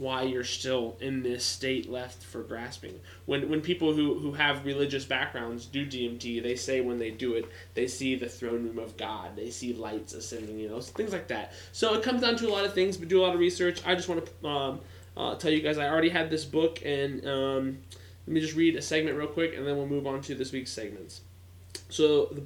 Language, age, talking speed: English, 20-39, 240 wpm